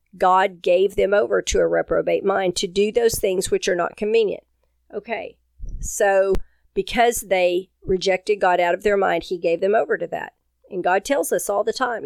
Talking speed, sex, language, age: 195 wpm, female, English, 50-69